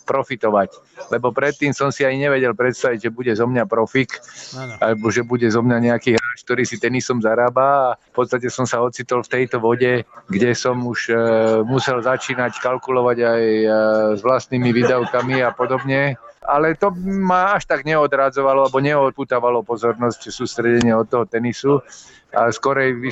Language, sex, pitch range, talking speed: Slovak, male, 120-145 Hz, 160 wpm